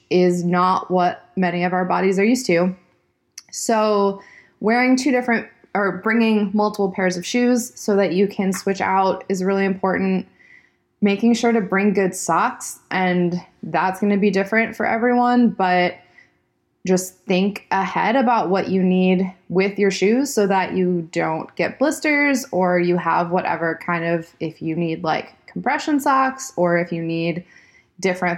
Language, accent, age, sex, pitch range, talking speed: English, American, 20-39, female, 180-210 Hz, 165 wpm